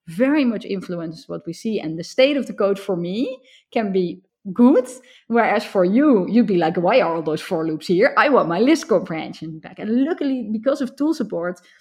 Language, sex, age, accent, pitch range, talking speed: English, female, 20-39, Dutch, 180-245 Hz, 215 wpm